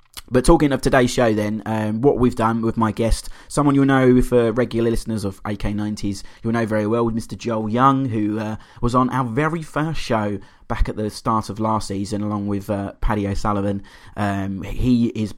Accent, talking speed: British, 205 wpm